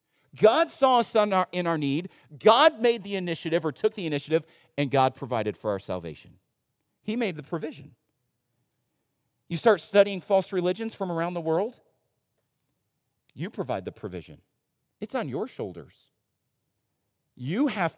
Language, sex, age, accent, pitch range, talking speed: English, male, 40-59, American, 135-180 Hz, 145 wpm